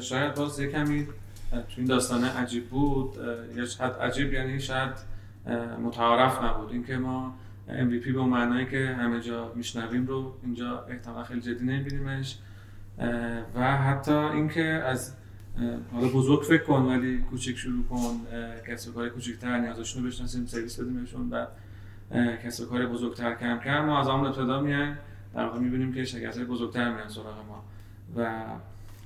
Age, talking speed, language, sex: 30-49, 150 wpm, Persian, male